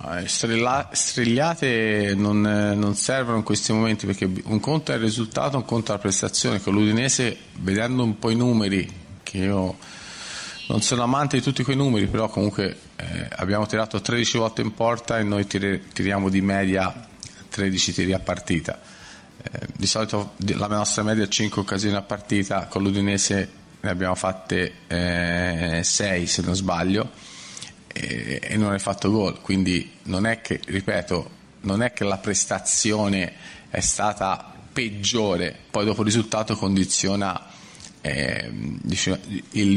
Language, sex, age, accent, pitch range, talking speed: Italian, male, 30-49, native, 95-110 Hz, 150 wpm